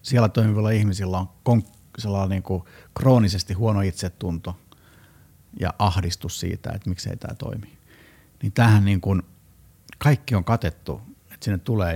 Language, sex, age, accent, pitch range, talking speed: Finnish, male, 50-69, native, 90-115 Hz, 125 wpm